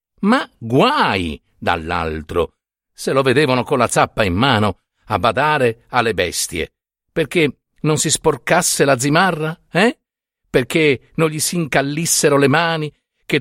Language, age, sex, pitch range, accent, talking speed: Italian, 50-69, male, 110-160 Hz, native, 135 wpm